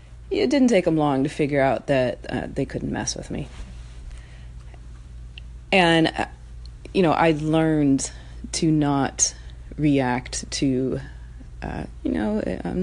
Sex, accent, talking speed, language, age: female, American, 135 wpm, English, 30-49